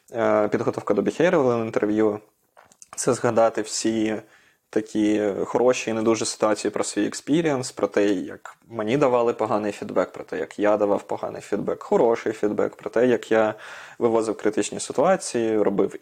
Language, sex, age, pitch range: Ukrainian, male, 20-39, 105-125 Hz